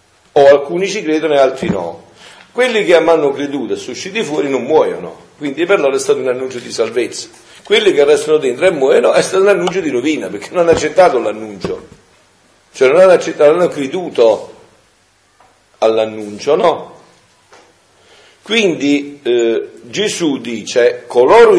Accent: native